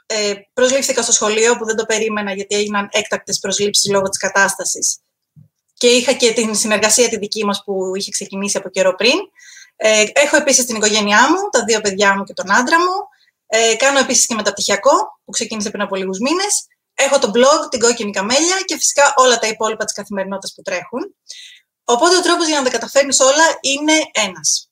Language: Greek